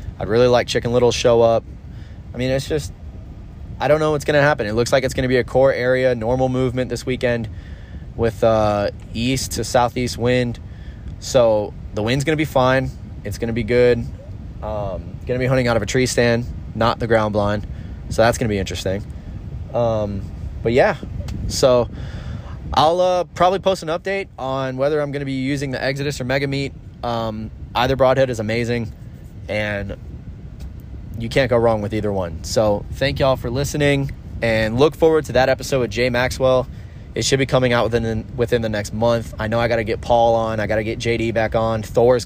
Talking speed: 200 wpm